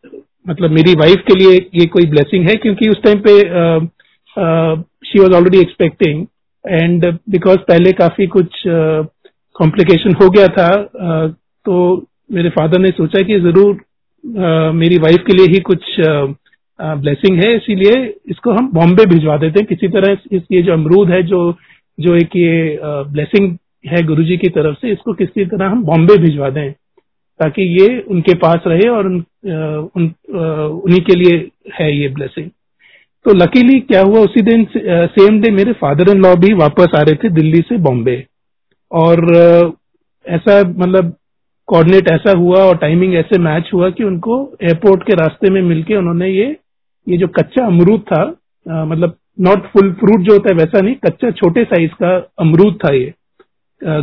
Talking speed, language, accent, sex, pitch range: 175 wpm, Hindi, native, male, 165-200 Hz